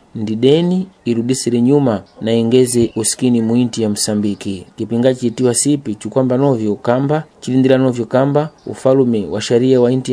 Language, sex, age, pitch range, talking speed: Portuguese, male, 30-49, 115-135 Hz, 140 wpm